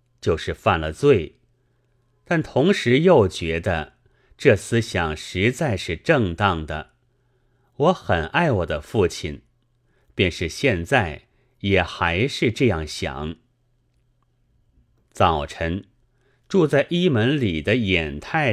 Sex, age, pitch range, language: male, 30-49, 95-125 Hz, Chinese